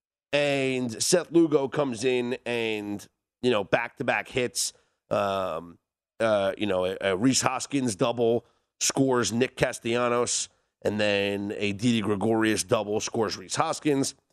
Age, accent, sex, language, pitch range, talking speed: 30-49, American, male, English, 110-145 Hz, 125 wpm